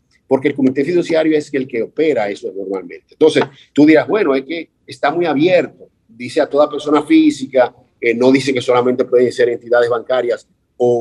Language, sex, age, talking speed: Spanish, male, 50-69, 185 wpm